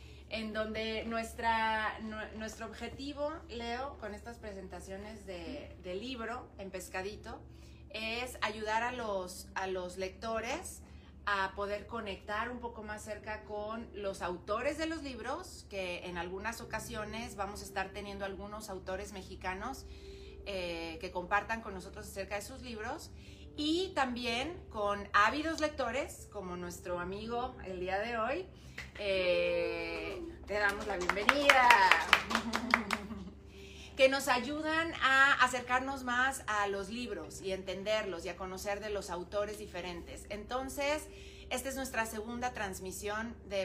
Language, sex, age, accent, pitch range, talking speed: Spanish, female, 30-49, Mexican, 190-240 Hz, 130 wpm